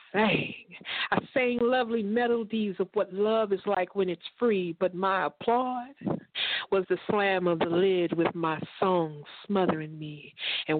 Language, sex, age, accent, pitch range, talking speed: English, female, 50-69, American, 185-235 Hz, 150 wpm